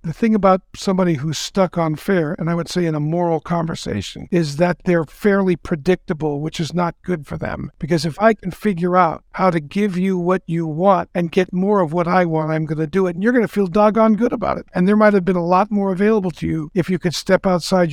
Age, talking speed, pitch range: 60-79, 260 wpm, 165-195 Hz